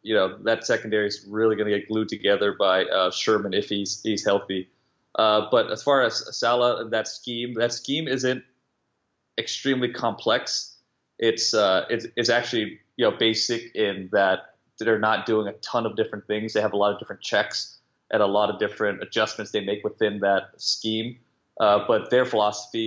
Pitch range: 100-115 Hz